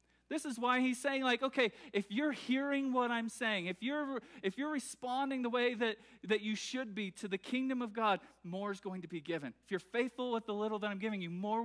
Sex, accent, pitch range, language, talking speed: male, American, 170-230 Hz, English, 240 wpm